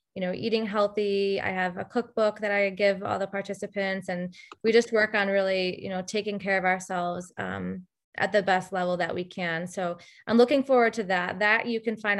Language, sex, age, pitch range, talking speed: English, female, 20-39, 185-220 Hz, 215 wpm